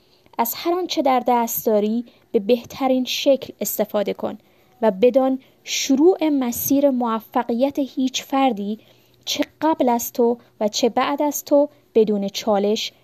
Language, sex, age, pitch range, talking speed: Persian, female, 20-39, 215-270 Hz, 135 wpm